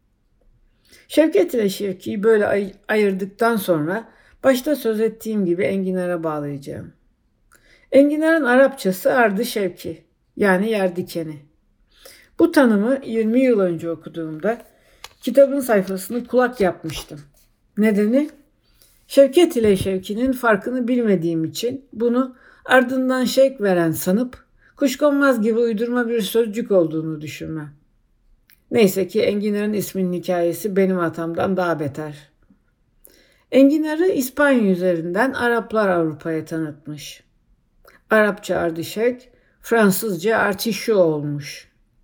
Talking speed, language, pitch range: 95 wpm, Turkish, 165-230 Hz